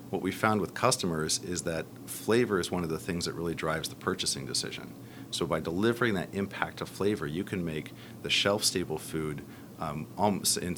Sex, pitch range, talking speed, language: male, 80-95 Hz, 190 wpm, English